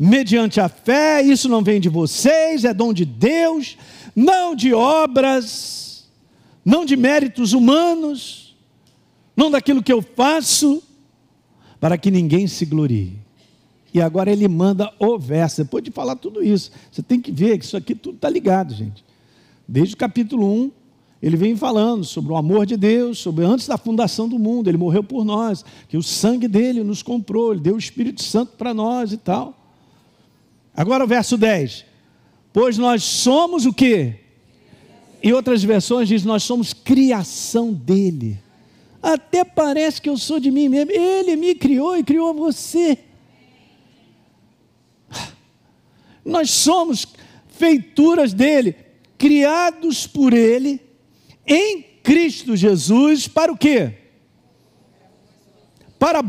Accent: Brazilian